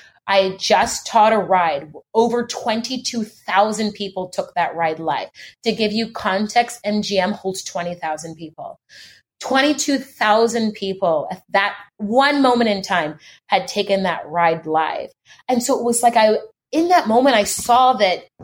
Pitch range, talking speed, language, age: 195-250 Hz, 145 wpm, English, 30-49